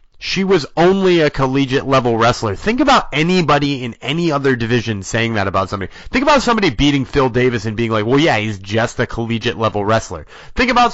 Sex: male